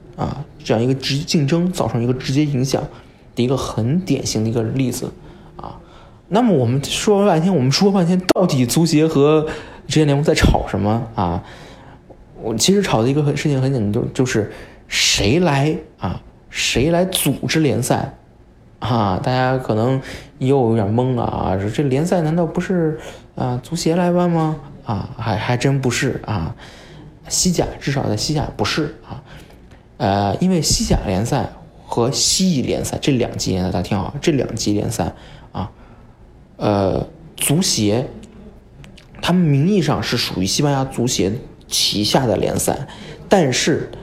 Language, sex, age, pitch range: Chinese, male, 20-39, 115-165 Hz